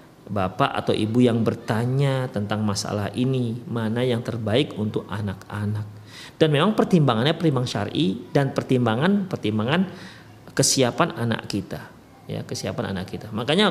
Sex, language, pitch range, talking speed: male, Indonesian, 125-200 Hz, 125 wpm